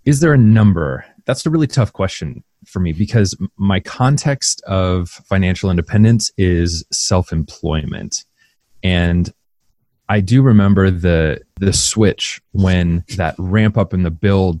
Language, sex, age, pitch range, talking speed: English, male, 30-49, 85-105 Hz, 135 wpm